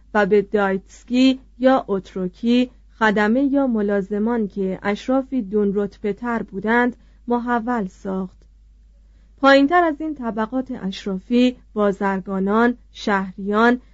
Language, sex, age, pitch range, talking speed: Persian, female, 30-49, 200-250 Hz, 100 wpm